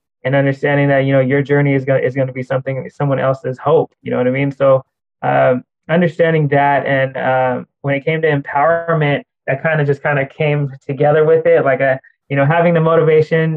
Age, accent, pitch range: 20-39, American, 135-150 Hz